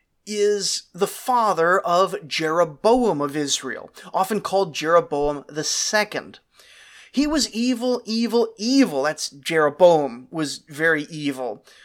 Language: English